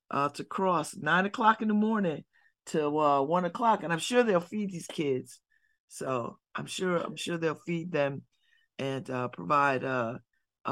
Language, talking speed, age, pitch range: English, 175 wpm, 50-69, 135-190 Hz